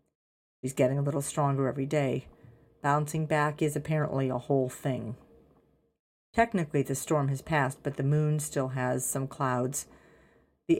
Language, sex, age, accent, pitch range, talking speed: English, female, 50-69, American, 135-160 Hz, 150 wpm